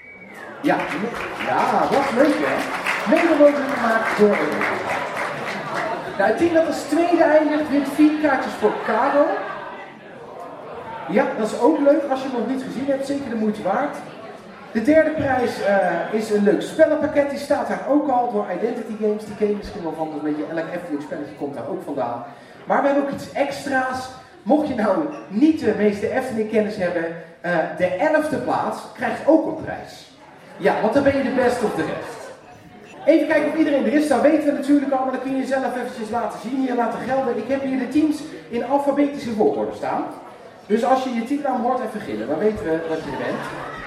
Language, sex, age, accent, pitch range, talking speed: Dutch, male, 40-59, Dutch, 215-295 Hz, 200 wpm